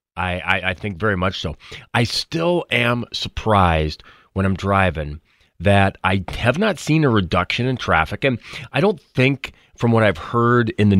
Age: 30-49